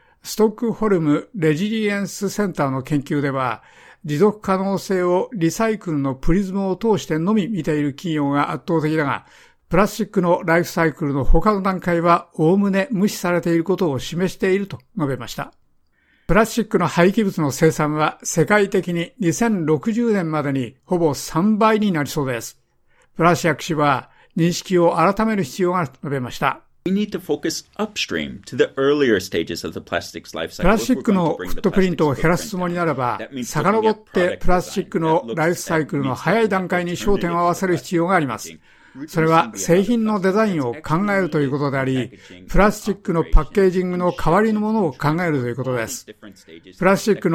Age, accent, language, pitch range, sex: 60-79, native, Japanese, 150-195 Hz, male